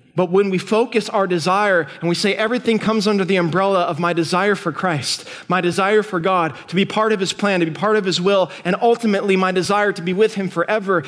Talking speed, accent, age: 240 wpm, American, 20-39